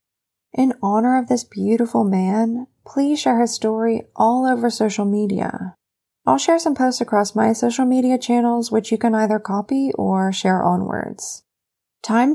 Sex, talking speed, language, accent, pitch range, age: female, 155 wpm, English, American, 195-250 Hz, 20-39